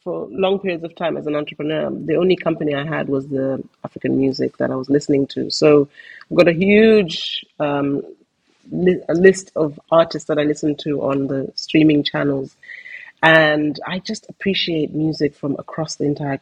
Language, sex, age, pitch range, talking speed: English, female, 30-49, 145-190 Hz, 175 wpm